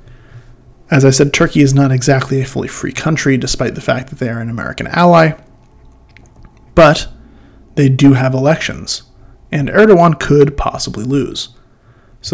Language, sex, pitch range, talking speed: English, male, 125-140 Hz, 150 wpm